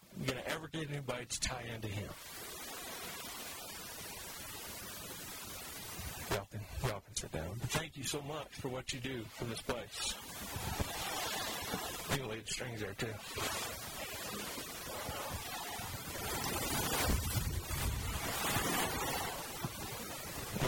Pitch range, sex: 130-180 Hz, male